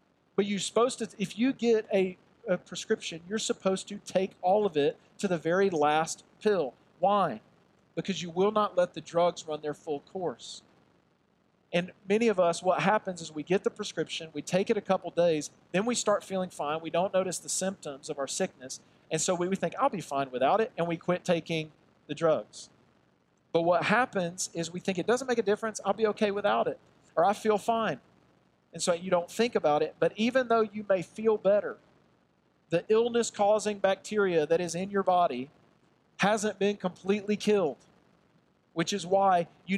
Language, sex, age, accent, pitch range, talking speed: English, male, 40-59, American, 165-205 Hz, 195 wpm